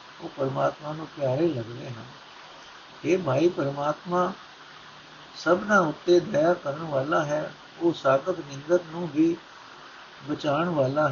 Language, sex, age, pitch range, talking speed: Punjabi, male, 60-79, 140-175 Hz, 115 wpm